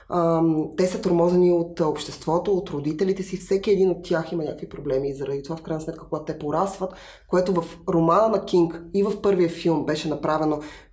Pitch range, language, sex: 165-190 Hz, Bulgarian, female